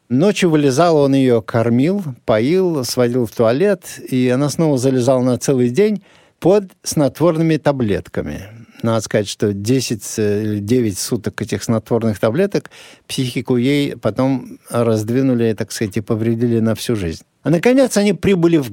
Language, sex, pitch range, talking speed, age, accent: Russian, male, 115-160 Hz, 145 wpm, 50-69, native